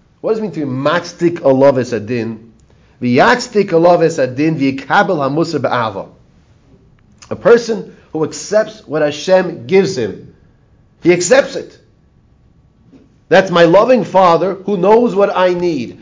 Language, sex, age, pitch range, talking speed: English, male, 40-59, 130-190 Hz, 105 wpm